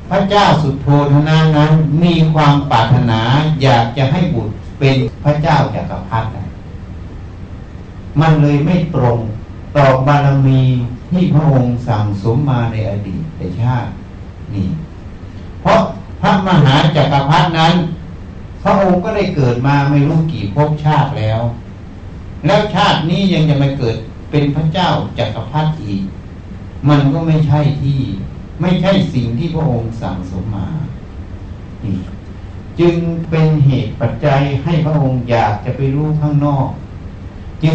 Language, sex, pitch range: Thai, male, 100-155 Hz